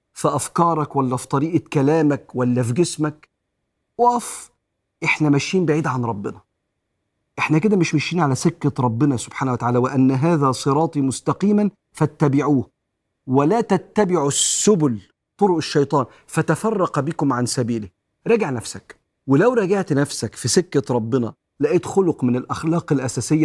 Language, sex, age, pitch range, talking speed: Arabic, male, 40-59, 130-175 Hz, 130 wpm